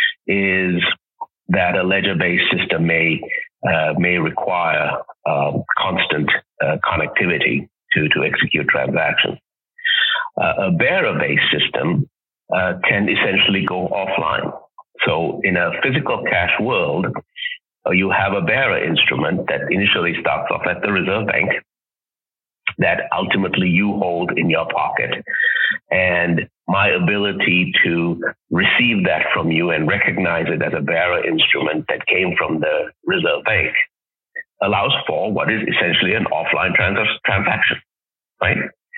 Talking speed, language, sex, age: 130 wpm, English, male, 50-69